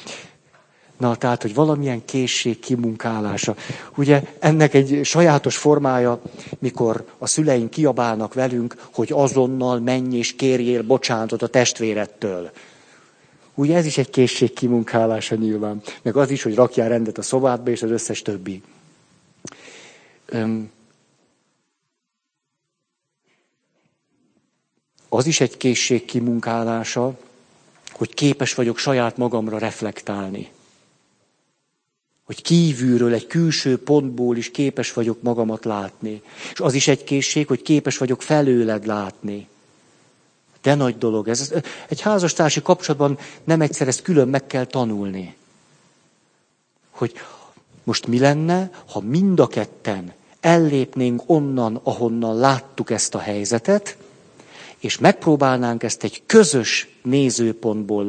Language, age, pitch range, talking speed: Hungarian, 50-69, 115-140 Hz, 110 wpm